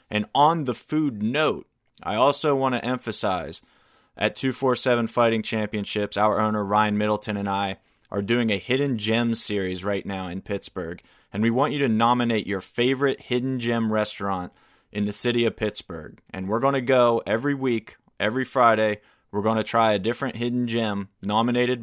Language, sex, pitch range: English, male, 105-125 Hz